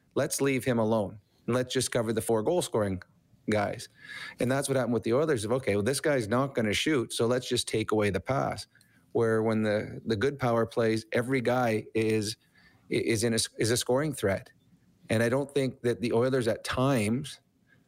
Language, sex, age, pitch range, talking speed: English, male, 30-49, 110-130 Hz, 205 wpm